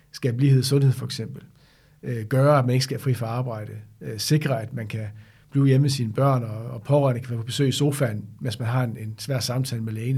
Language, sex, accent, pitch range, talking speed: Danish, male, native, 125-145 Hz, 255 wpm